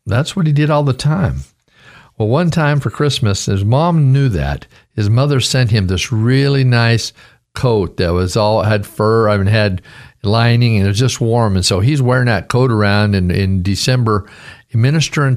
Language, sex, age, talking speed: English, male, 50-69, 190 wpm